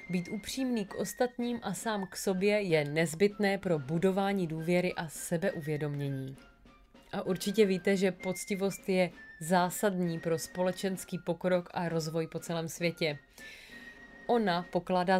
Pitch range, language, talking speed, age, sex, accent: 175-215 Hz, Czech, 125 wpm, 30-49, female, native